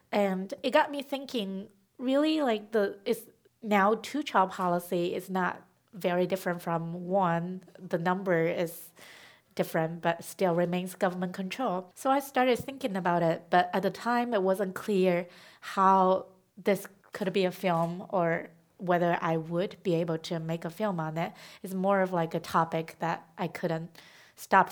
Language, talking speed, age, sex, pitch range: English, 165 wpm, 30-49, female, 180-220 Hz